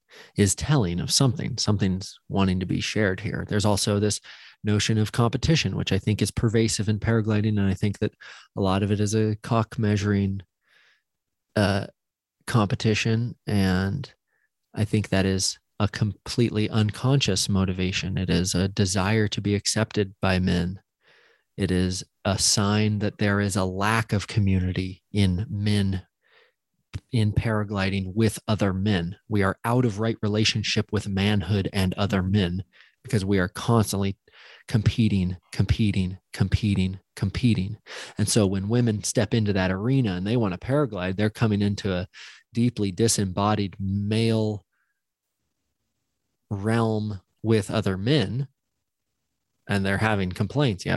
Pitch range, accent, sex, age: 95-110 Hz, American, male, 30-49